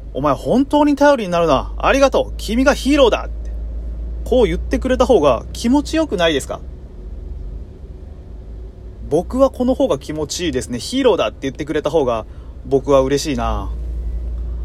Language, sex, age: Japanese, male, 30-49